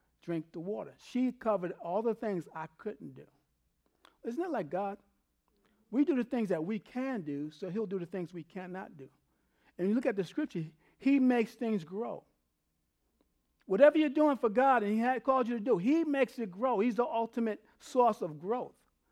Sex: male